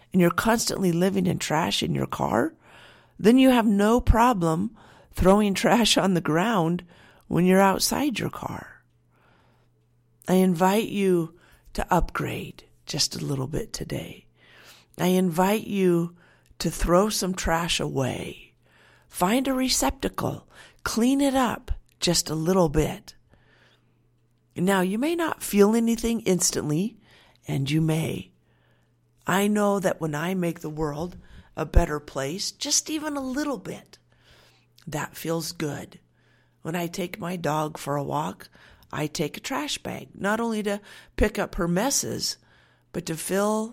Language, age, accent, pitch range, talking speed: English, 50-69, American, 155-210 Hz, 140 wpm